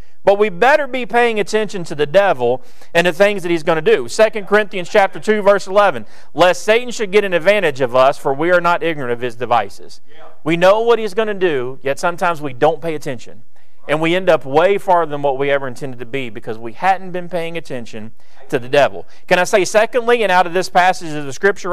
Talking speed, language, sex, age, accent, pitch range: 240 wpm, English, male, 40-59, American, 155-205 Hz